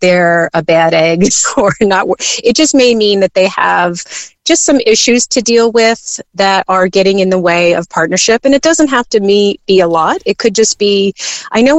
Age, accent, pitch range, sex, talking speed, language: 30-49, American, 175-220 Hz, female, 210 wpm, English